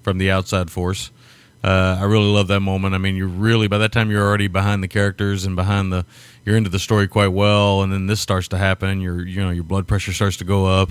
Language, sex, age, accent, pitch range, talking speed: English, male, 30-49, American, 95-110 Hz, 260 wpm